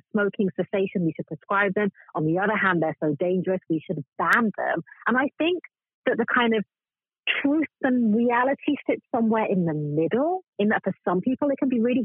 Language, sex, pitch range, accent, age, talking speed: English, female, 165-235 Hz, British, 40-59, 205 wpm